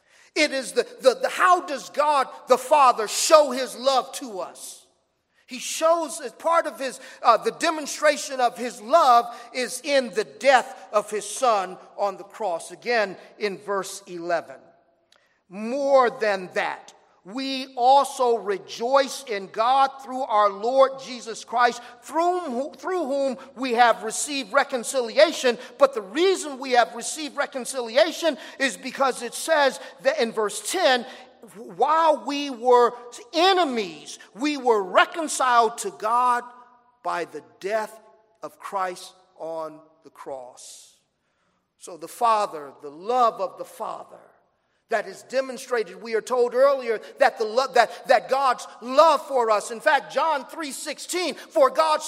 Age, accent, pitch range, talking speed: 40-59, American, 220-295 Hz, 140 wpm